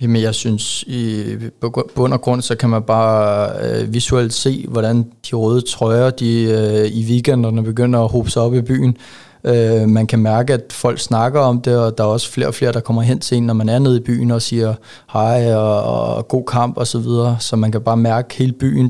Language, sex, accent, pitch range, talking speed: Danish, male, native, 110-125 Hz, 230 wpm